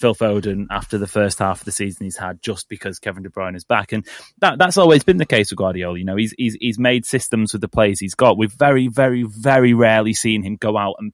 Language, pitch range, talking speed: English, 110-140 Hz, 265 wpm